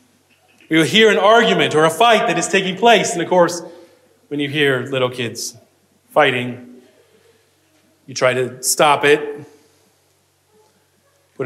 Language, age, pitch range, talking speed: English, 30-49, 160-230 Hz, 140 wpm